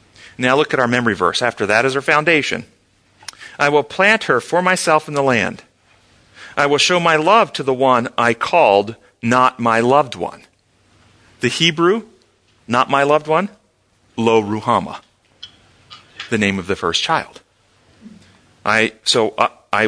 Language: English